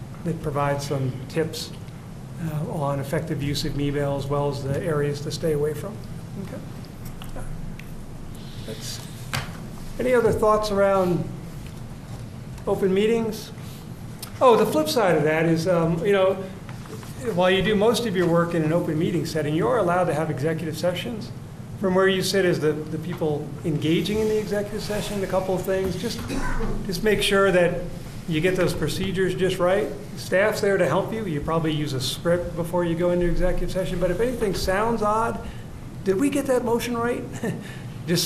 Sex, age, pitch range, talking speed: male, 40-59, 155-190 Hz, 175 wpm